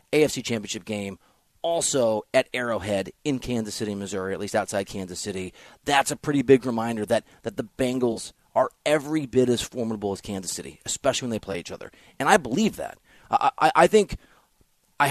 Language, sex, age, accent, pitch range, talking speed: English, male, 30-49, American, 105-135 Hz, 185 wpm